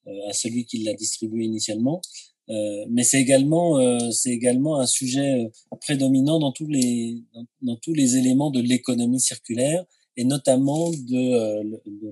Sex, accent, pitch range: male, French, 110-140 Hz